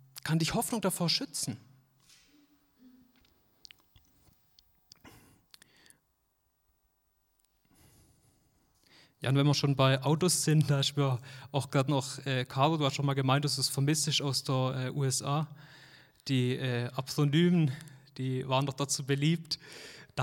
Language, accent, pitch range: German, German, 135-190 Hz